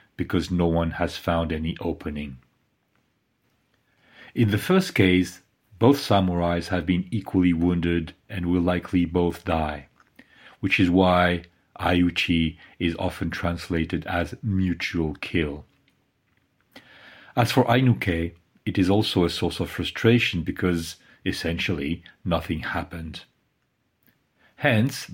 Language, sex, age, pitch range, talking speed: English, male, 40-59, 85-110 Hz, 110 wpm